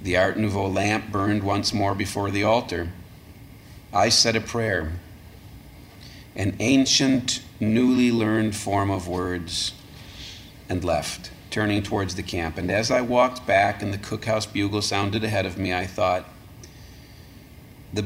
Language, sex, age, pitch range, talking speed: English, male, 40-59, 95-110 Hz, 145 wpm